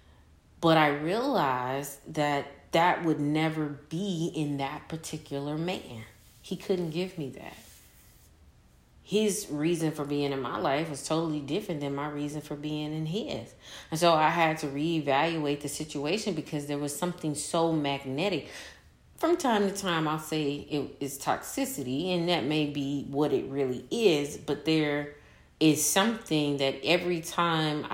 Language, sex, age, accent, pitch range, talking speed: English, female, 30-49, American, 130-160 Hz, 150 wpm